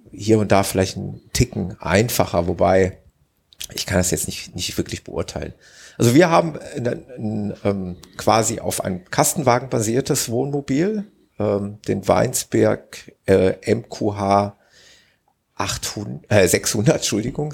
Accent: German